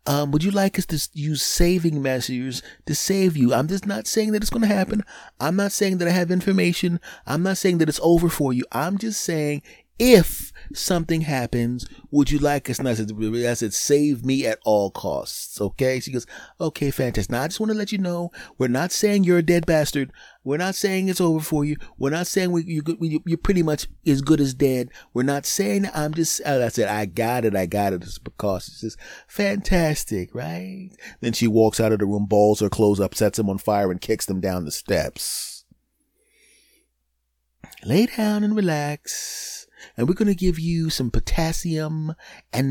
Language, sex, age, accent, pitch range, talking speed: English, male, 30-49, American, 110-170 Hz, 210 wpm